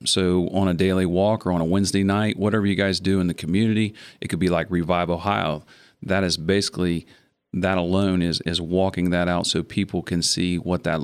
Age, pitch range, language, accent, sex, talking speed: 40-59, 90-105 Hz, English, American, male, 210 wpm